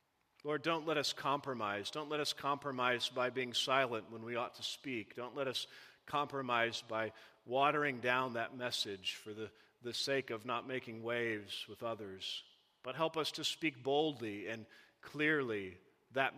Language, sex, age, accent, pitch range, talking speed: English, male, 40-59, American, 115-140 Hz, 165 wpm